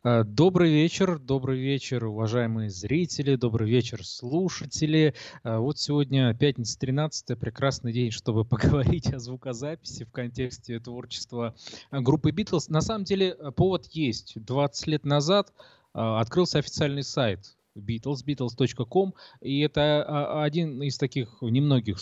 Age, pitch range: 20-39, 115-145 Hz